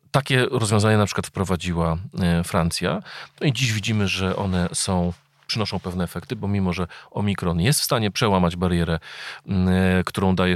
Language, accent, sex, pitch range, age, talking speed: Polish, native, male, 90-105 Hz, 40-59, 150 wpm